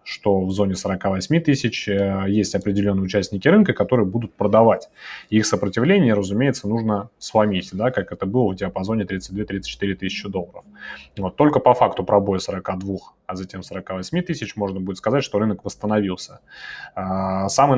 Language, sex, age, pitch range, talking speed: Russian, male, 20-39, 100-120 Hz, 145 wpm